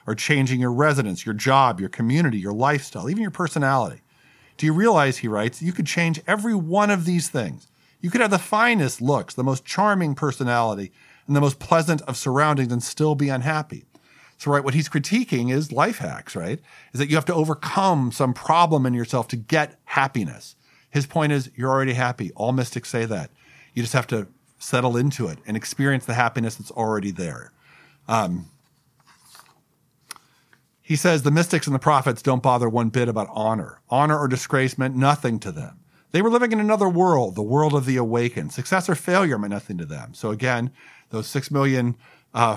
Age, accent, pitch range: 40-59, American, 120-155 Hz